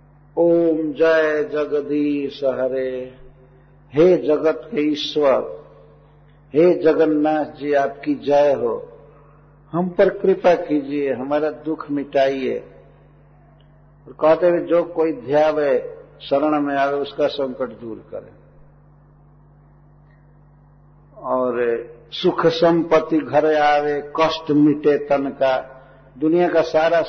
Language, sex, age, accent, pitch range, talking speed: Hindi, male, 60-79, native, 140-160 Hz, 100 wpm